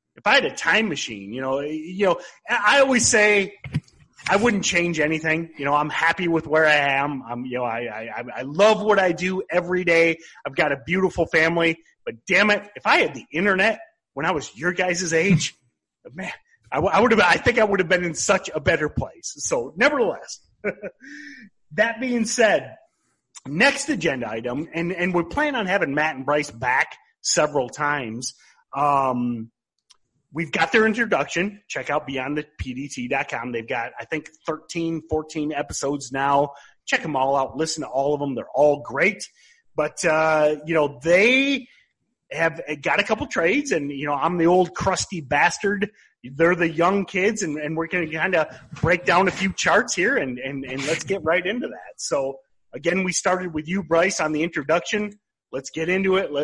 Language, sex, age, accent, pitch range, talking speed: English, male, 30-49, American, 145-195 Hz, 190 wpm